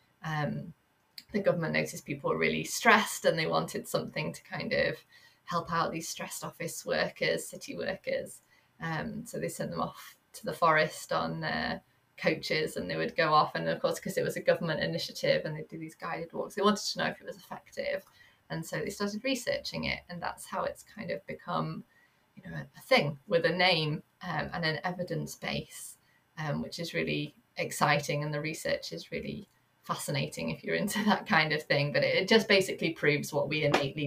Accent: British